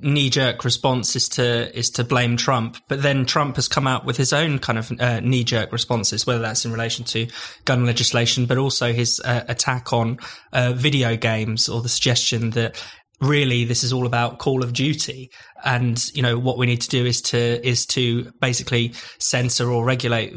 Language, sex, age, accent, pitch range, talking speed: English, male, 20-39, British, 120-130 Hz, 200 wpm